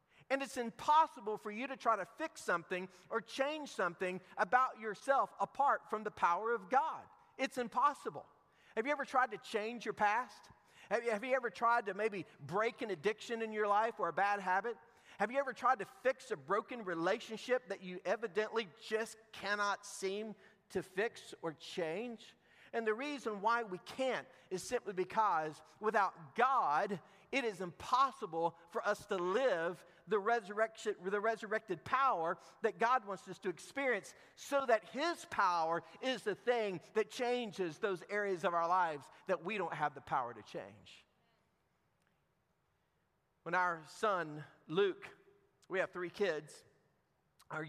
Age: 40-59